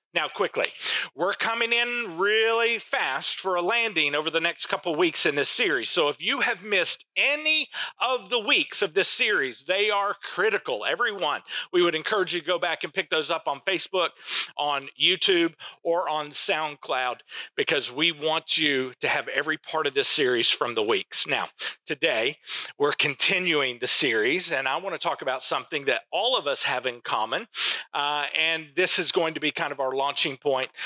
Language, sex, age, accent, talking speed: English, male, 40-59, American, 195 wpm